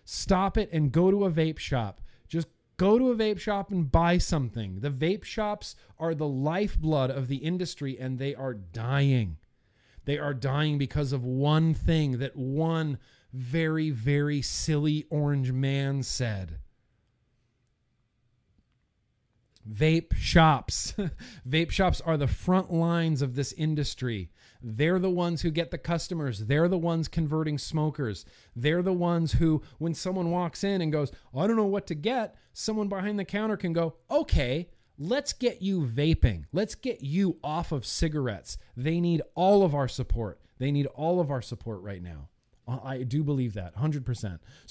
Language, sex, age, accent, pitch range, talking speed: English, male, 40-59, American, 120-170 Hz, 160 wpm